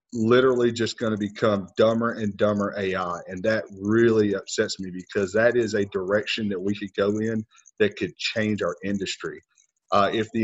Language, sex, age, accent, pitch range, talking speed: English, male, 40-59, American, 95-110 Hz, 185 wpm